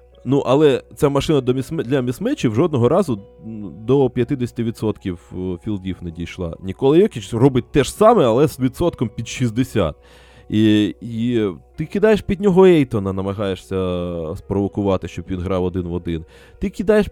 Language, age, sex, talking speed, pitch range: Ukrainian, 20-39, male, 140 wpm, 95-135 Hz